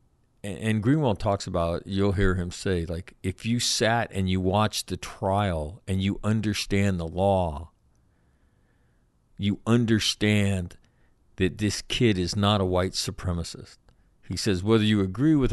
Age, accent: 50-69, American